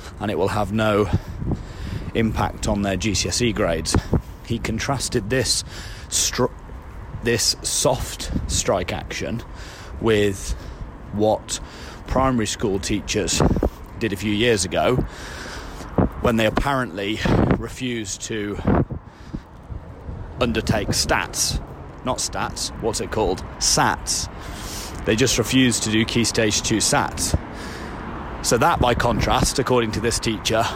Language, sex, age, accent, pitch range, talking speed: English, male, 30-49, British, 100-125 Hz, 115 wpm